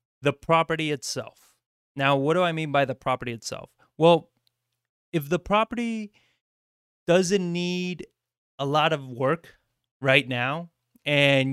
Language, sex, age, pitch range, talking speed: English, male, 30-49, 135-170 Hz, 130 wpm